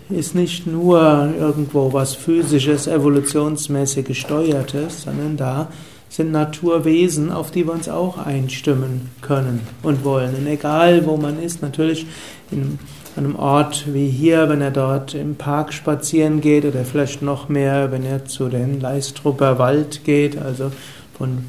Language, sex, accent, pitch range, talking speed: German, male, German, 135-150 Hz, 145 wpm